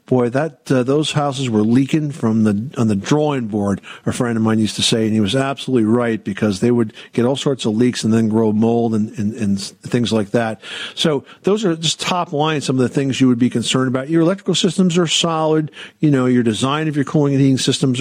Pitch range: 115-145 Hz